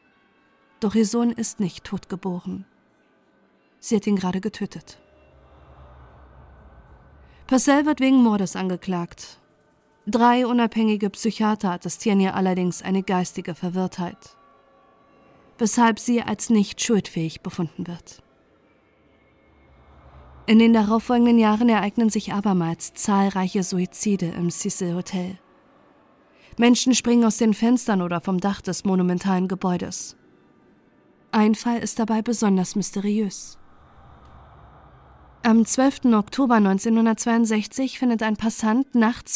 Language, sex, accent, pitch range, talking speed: German, female, German, 180-225 Hz, 105 wpm